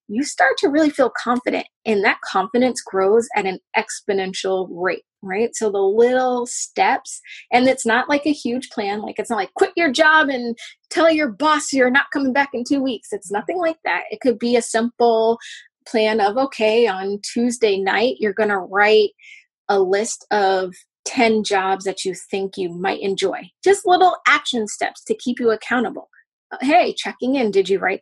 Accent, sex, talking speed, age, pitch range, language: American, female, 190 wpm, 20-39, 205-265 Hz, English